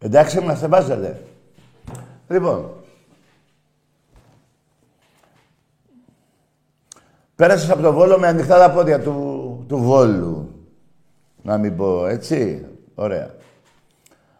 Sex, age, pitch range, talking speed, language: male, 50-69, 95-145 Hz, 90 wpm, Greek